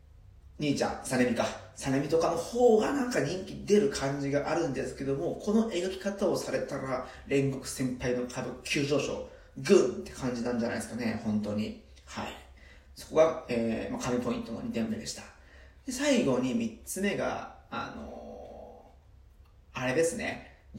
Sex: male